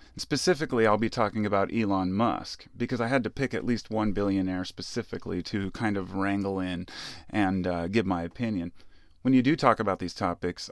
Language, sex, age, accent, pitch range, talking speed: English, male, 30-49, American, 90-115 Hz, 190 wpm